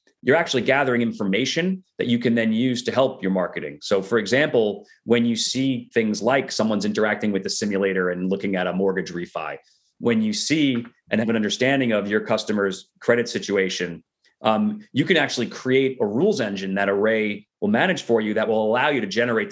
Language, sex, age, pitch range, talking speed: English, male, 30-49, 100-130 Hz, 195 wpm